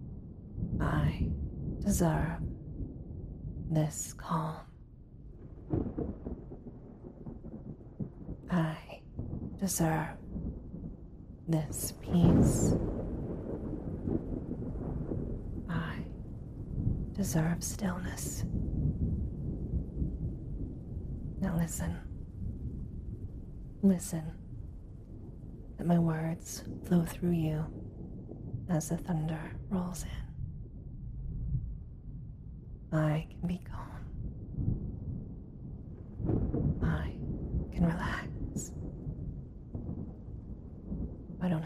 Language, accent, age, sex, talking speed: English, American, 30-49, female, 50 wpm